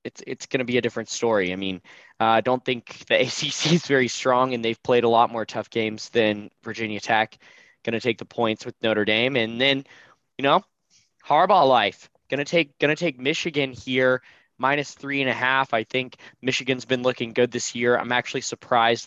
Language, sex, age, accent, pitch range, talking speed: English, male, 10-29, American, 105-130 Hz, 215 wpm